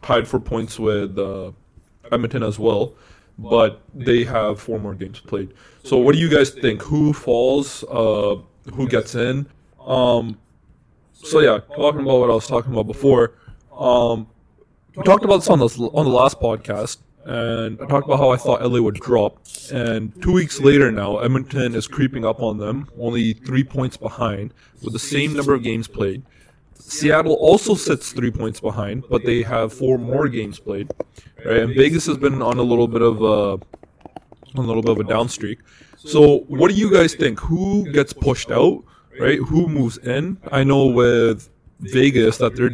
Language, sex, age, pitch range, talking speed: English, male, 20-39, 110-135 Hz, 185 wpm